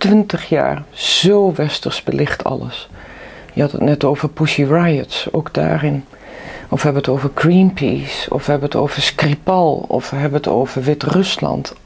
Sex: female